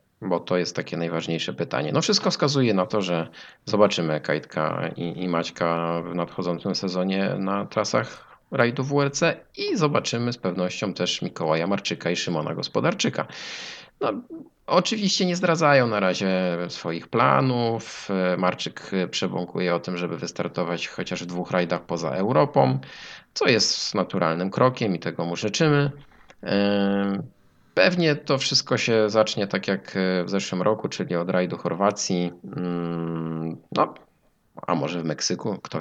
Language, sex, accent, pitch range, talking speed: Polish, male, native, 90-120 Hz, 135 wpm